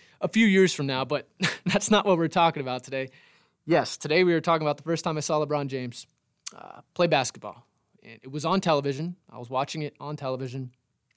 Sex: male